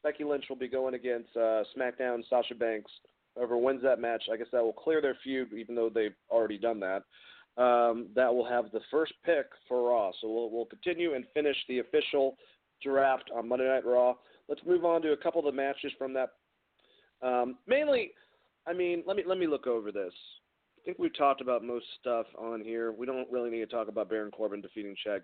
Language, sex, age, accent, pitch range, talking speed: English, male, 40-59, American, 120-155 Hz, 215 wpm